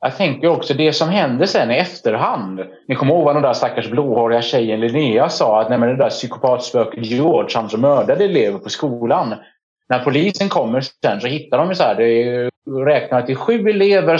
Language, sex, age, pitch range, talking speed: Swedish, male, 30-49, 115-170 Hz, 200 wpm